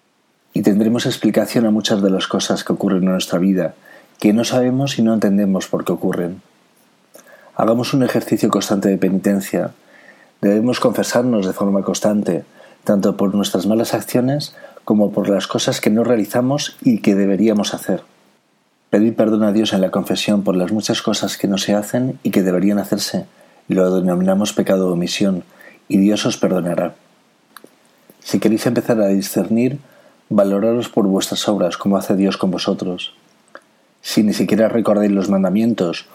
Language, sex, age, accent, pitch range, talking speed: Spanish, male, 40-59, Spanish, 95-115 Hz, 160 wpm